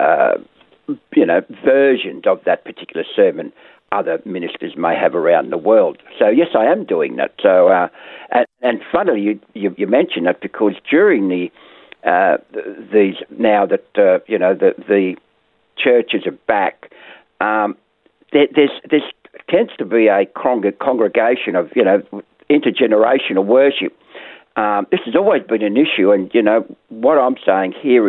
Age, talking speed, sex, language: 60-79, 160 wpm, male, English